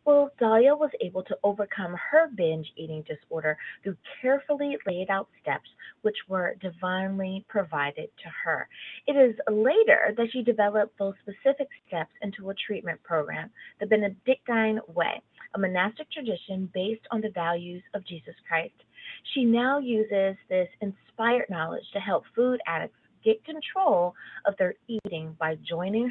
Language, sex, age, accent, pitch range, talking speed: English, female, 30-49, American, 180-235 Hz, 145 wpm